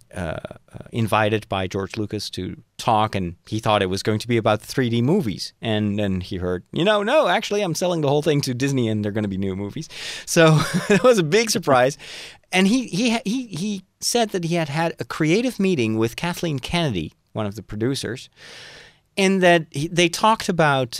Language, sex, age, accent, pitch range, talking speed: English, male, 40-59, American, 110-165 Hz, 210 wpm